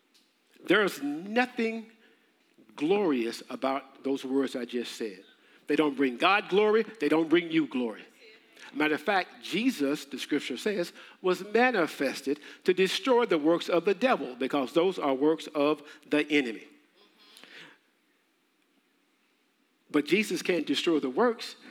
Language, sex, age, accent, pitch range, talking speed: English, male, 50-69, American, 160-255 Hz, 135 wpm